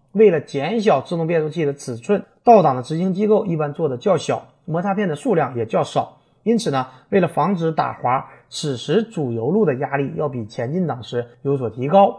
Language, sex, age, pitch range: Chinese, male, 30-49, 135-195 Hz